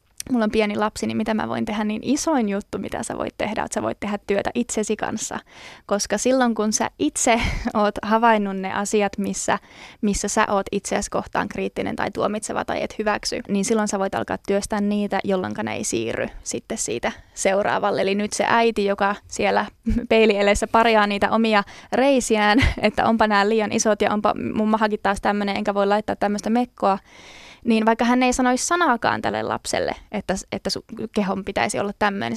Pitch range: 205-240 Hz